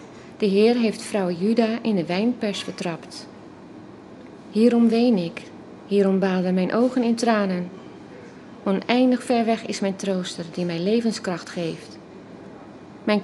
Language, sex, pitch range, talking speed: Dutch, female, 185-230 Hz, 130 wpm